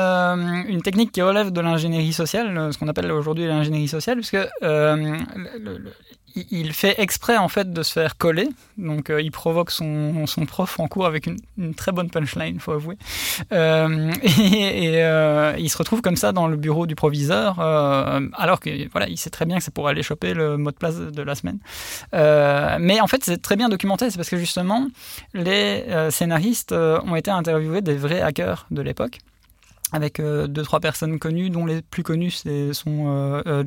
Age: 20-39